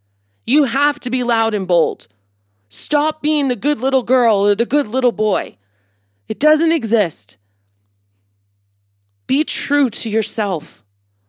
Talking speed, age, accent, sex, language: 135 wpm, 20-39, American, female, English